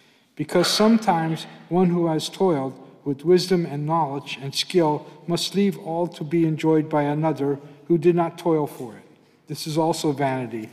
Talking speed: 170 wpm